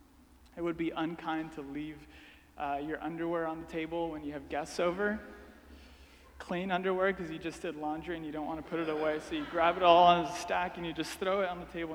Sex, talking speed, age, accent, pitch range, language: male, 240 wpm, 20-39, American, 145-190 Hz, English